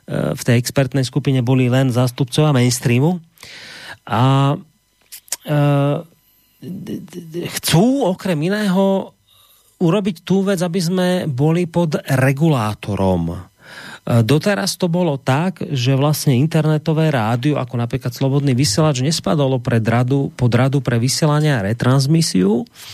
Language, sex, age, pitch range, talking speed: Slovak, male, 30-49, 125-170 Hz, 105 wpm